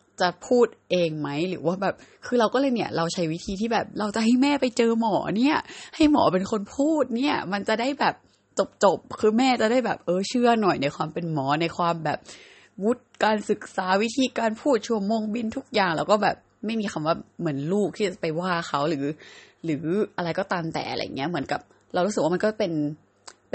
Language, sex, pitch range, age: Thai, female, 160-220 Hz, 20-39